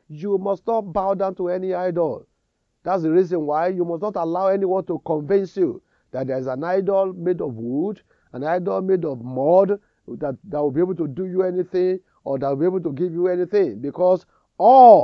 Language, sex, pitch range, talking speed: English, male, 135-185 Hz, 210 wpm